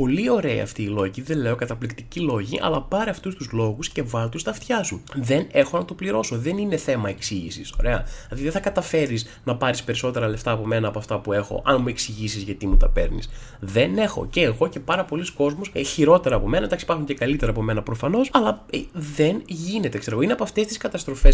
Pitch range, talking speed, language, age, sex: 115-155 Hz, 215 wpm, Greek, 20-39, male